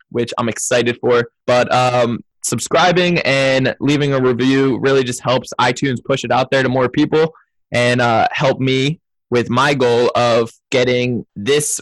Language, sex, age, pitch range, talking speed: English, male, 20-39, 120-135 Hz, 165 wpm